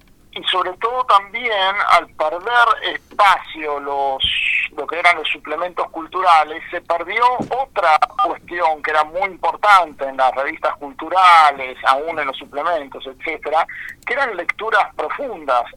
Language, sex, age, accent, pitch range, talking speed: Spanish, male, 50-69, Argentinian, 145-185 Hz, 135 wpm